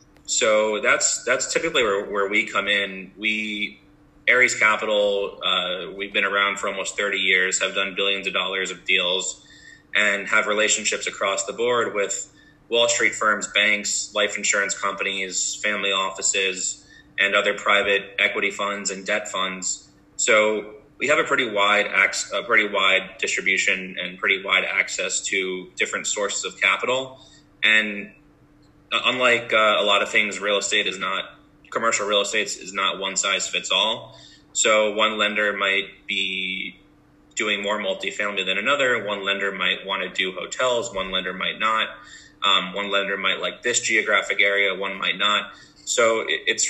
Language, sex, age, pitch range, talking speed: English, male, 20-39, 95-105 Hz, 160 wpm